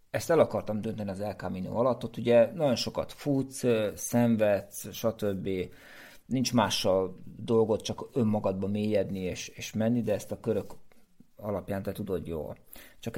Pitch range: 100-125 Hz